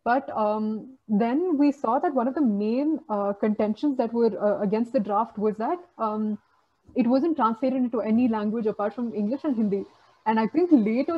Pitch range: 210-265 Hz